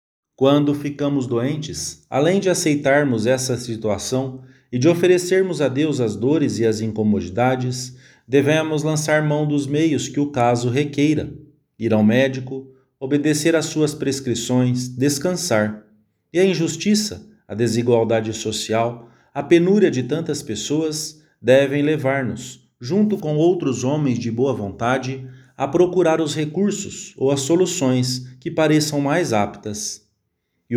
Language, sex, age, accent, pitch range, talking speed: English, male, 40-59, Brazilian, 120-155 Hz, 130 wpm